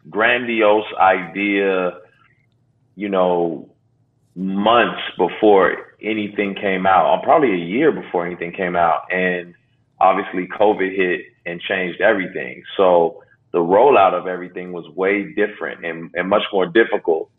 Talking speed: 130 wpm